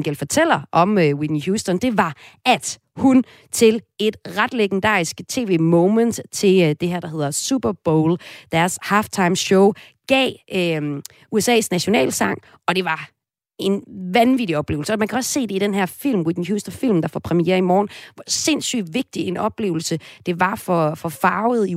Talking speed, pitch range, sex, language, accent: 170 wpm, 160-215 Hz, female, Danish, native